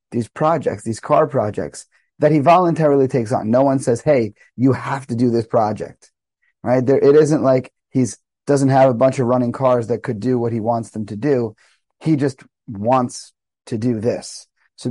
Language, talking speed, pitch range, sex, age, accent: English, 195 wpm, 110-140 Hz, male, 30-49, American